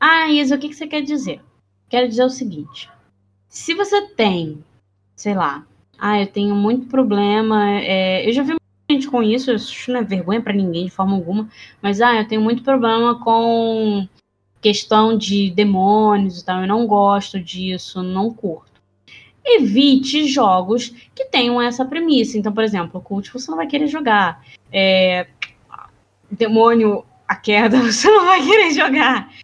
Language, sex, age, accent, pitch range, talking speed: Portuguese, female, 10-29, Brazilian, 195-265 Hz, 155 wpm